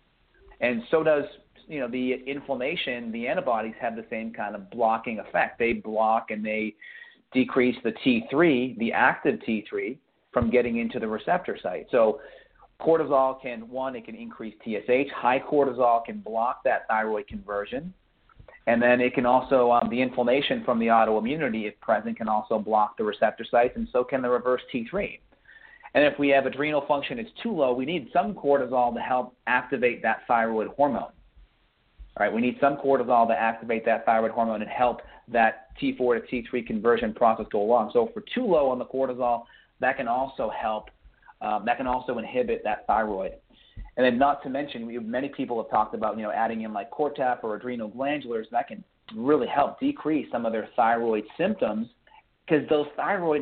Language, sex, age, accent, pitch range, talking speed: English, male, 40-59, American, 115-135 Hz, 185 wpm